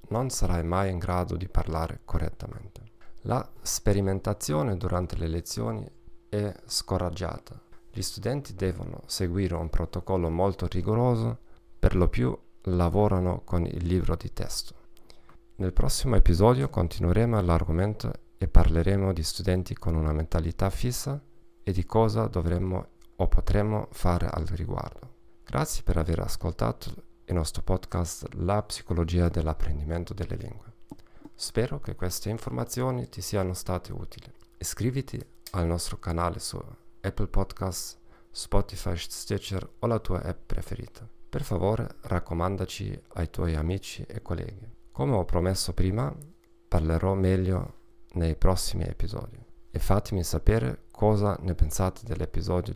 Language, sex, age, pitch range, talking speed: Italian, male, 40-59, 85-115 Hz, 125 wpm